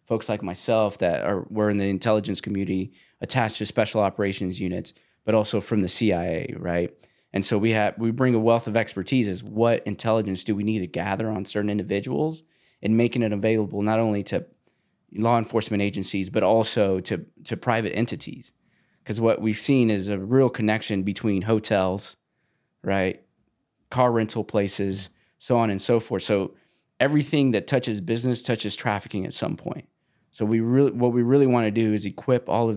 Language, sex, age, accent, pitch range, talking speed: English, male, 20-39, American, 100-115 Hz, 185 wpm